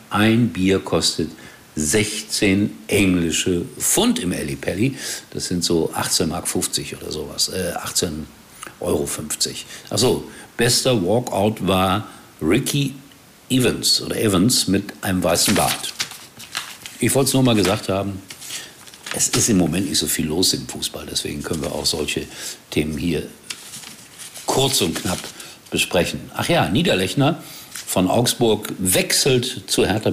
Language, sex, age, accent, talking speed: German, male, 60-79, German, 135 wpm